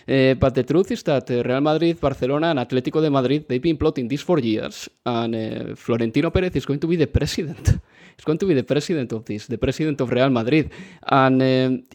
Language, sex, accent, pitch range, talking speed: English, male, Spanish, 120-155 Hz, 220 wpm